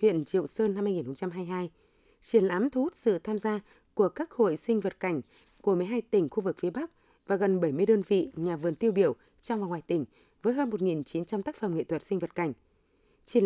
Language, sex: Vietnamese, female